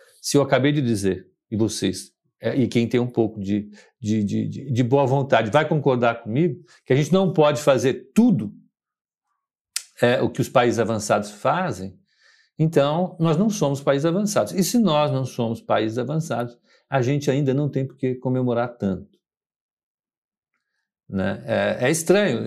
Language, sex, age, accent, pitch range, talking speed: Portuguese, male, 50-69, Brazilian, 120-160 Hz, 165 wpm